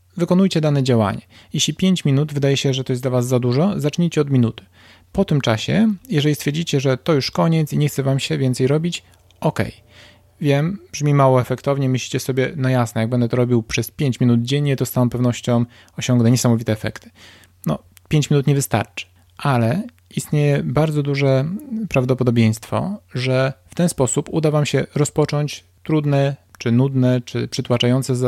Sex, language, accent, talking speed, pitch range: male, Polish, native, 175 wpm, 115-145 Hz